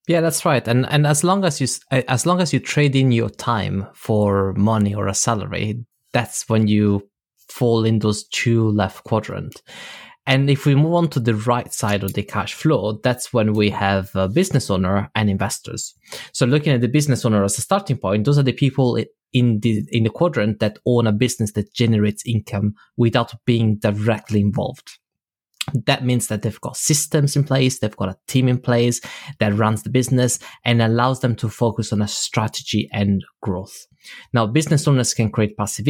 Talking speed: 195 wpm